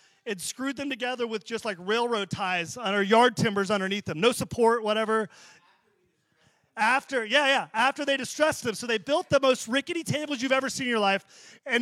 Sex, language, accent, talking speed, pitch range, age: male, English, American, 195 wpm, 215-265 Hz, 30-49